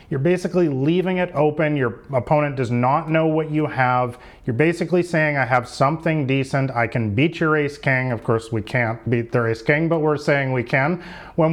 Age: 30-49